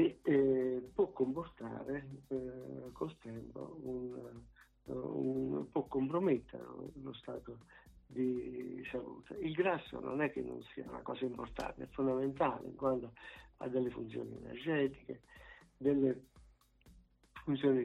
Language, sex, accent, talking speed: Italian, male, native, 110 wpm